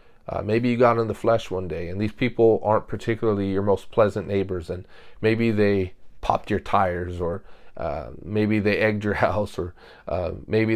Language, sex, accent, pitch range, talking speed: English, male, American, 95-115 Hz, 190 wpm